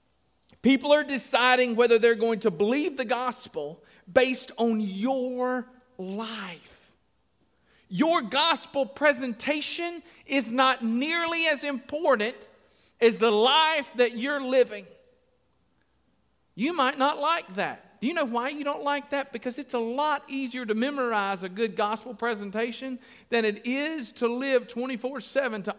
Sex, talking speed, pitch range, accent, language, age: male, 135 wpm, 235-295 Hz, American, English, 50-69